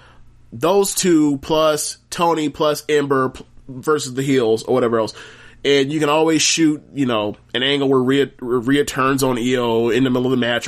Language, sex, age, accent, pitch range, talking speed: English, male, 20-39, American, 120-150 Hz, 185 wpm